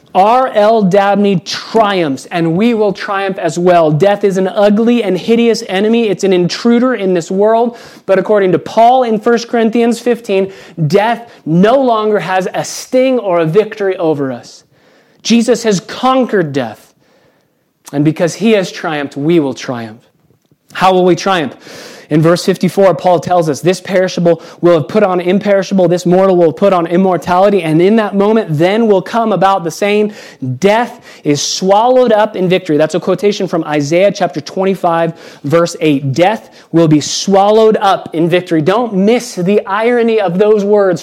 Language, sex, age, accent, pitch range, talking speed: English, male, 30-49, American, 170-220 Hz, 170 wpm